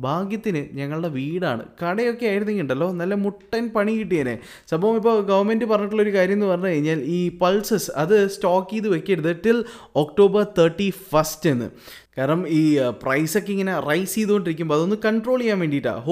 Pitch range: 155-205 Hz